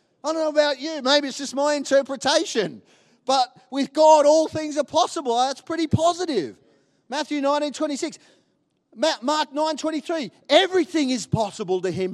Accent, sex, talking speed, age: Australian, male, 155 wpm, 30-49